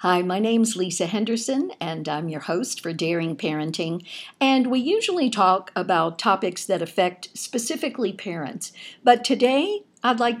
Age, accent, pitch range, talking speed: 60-79, American, 170-220 Hz, 155 wpm